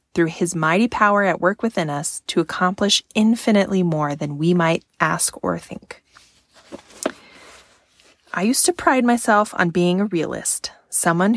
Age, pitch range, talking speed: 30-49, 175-210 Hz, 150 wpm